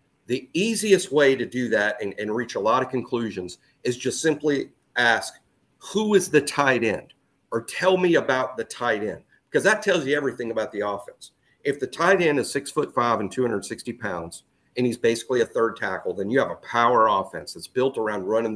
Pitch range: 120-175 Hz